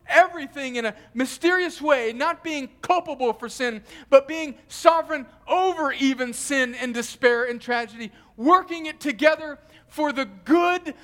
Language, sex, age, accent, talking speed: English, male, 50-69, American, 140 wpm